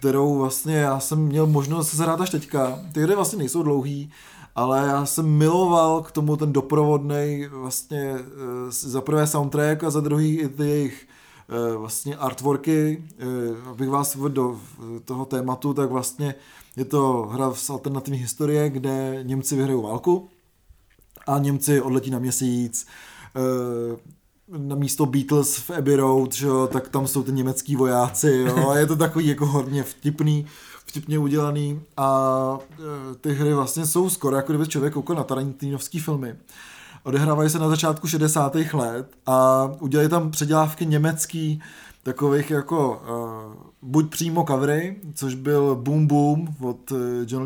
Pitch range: 130-155 Hz